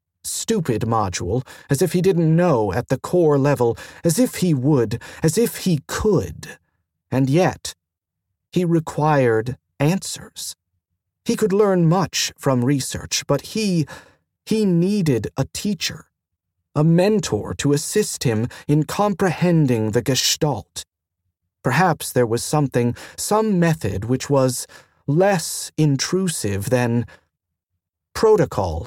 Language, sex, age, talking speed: English, male, 40-59, 120 wpm